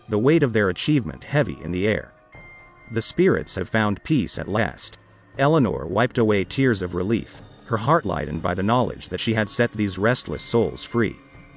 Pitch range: 95-125 Hz